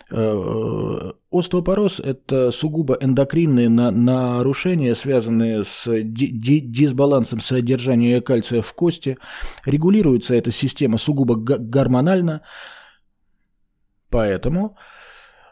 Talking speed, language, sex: 70 wpm, Russian, male